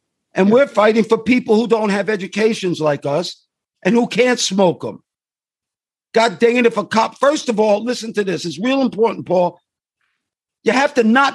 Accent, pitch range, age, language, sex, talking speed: American, 200-255 Hz, 50-69, English, male, 190 wpm